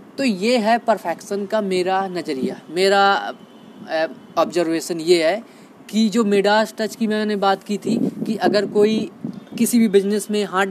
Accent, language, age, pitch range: native, Hindi, 20-39, 200-235 Hz